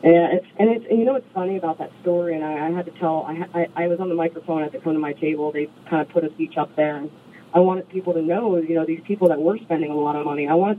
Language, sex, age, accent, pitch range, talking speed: English, female, 40-59, American, 155-185 Hz, 325 wpm